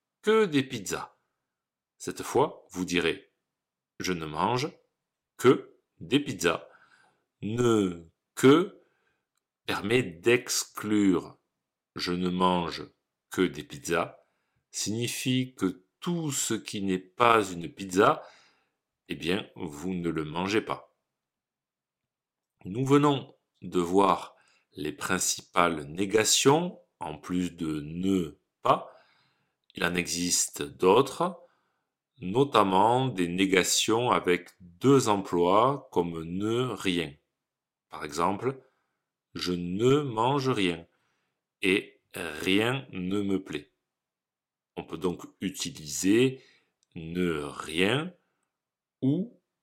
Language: French